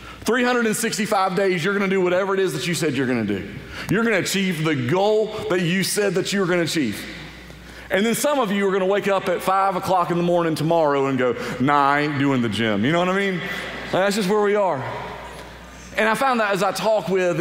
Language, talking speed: English, 240 wpm